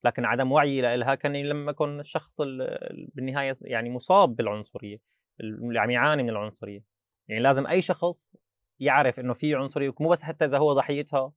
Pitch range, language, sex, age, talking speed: 115-145 Hz, Arabic, male, 20-39, 160 wpm